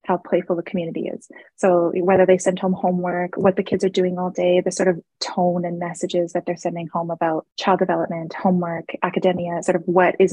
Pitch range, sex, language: 175-200 Hz, female, English